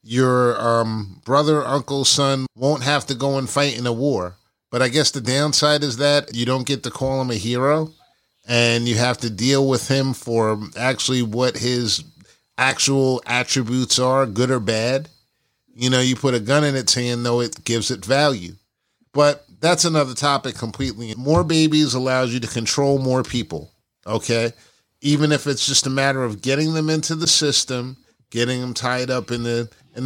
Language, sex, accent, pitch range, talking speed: English, male, American, 120-145 Hz, 185 wpm